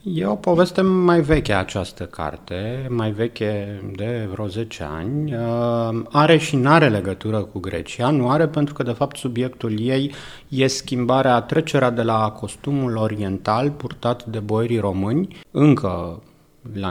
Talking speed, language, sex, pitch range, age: 140 wpm, Romanian, male, 105-145 Hz, 30-49